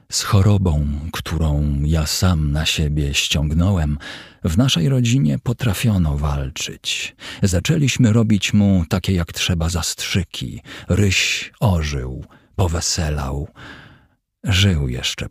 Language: Polish